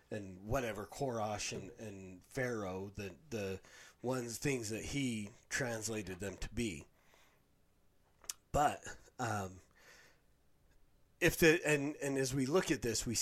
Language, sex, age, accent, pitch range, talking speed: English, male, 30-49, American, 110-135 Hz, 125 wpm